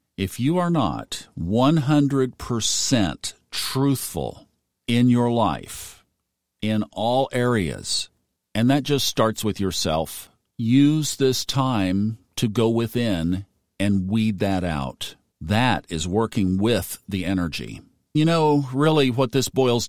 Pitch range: 95-125 Hz